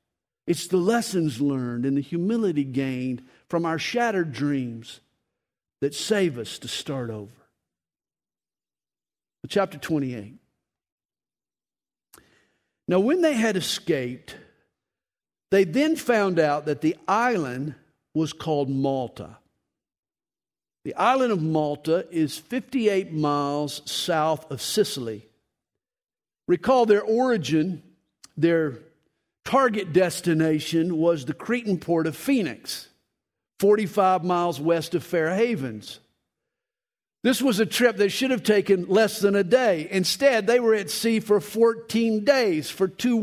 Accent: American